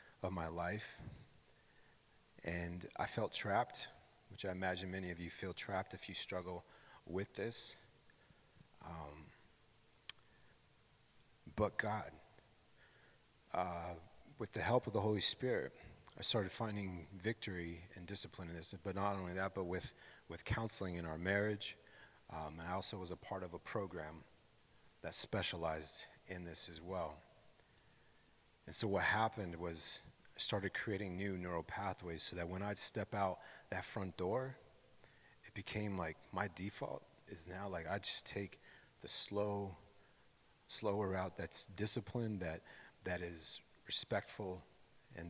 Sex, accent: male, American